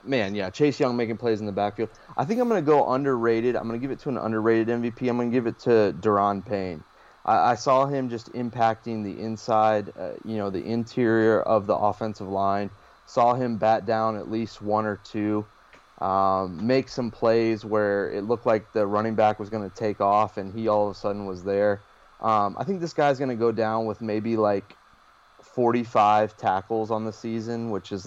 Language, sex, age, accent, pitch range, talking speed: English, male, 20-39, American, 100-115 Hz, 220 wpm